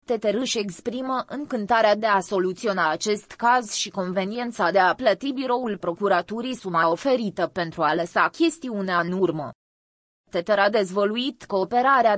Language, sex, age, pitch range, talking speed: Romanian, female, 20-39, 195-240 Hz, 140 wpm